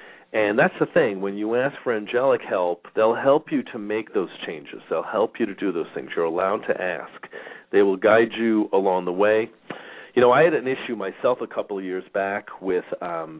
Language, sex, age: English, male, 40-59